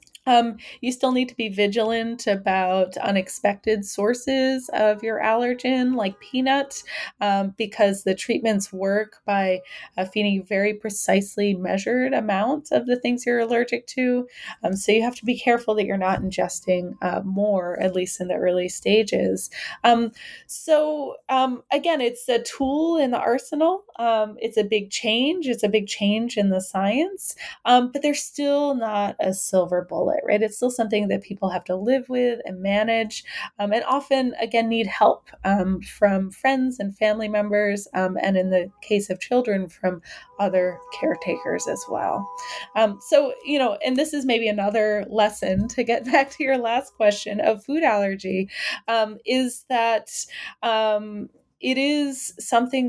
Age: 20-39